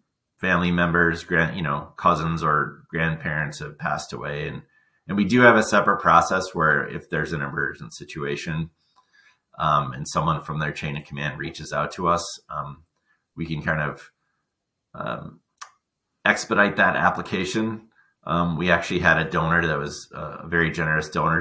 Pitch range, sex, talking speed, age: 80-95 Hz, male, 165 wpm, 30-49